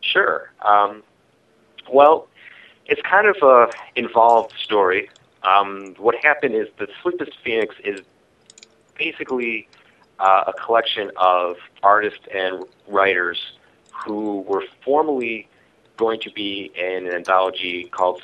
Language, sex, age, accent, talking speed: English, male, 30-49, American, 115 wpm